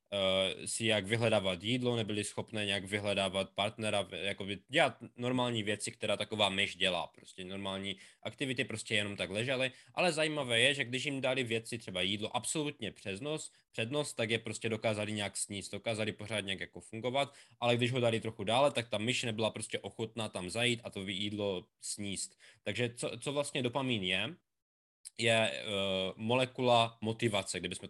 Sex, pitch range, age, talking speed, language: male, 100-120 Hz, 20-39, 165 wpm, Czech